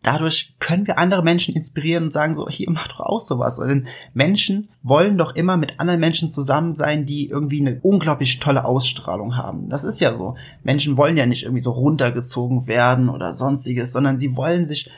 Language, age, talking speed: German, 20-39, 195 wpm